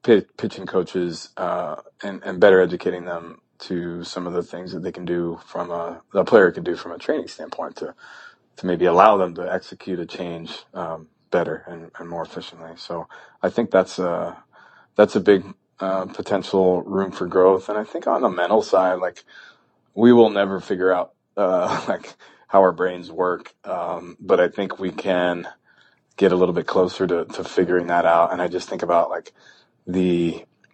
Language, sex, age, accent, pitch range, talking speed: English, male, 30-49, American, 85-95 Hz, 190 wpm